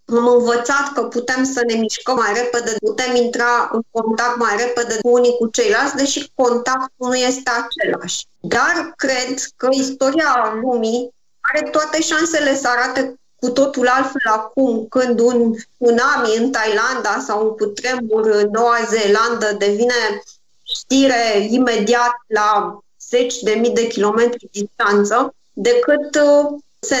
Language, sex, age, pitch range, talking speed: Romanian, female, 20-39, 225-260 Hz, 135 wpm